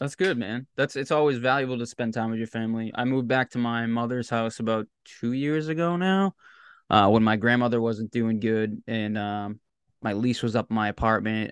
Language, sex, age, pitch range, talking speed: English, male, 20-39, 105-125 Hz, 215 wpm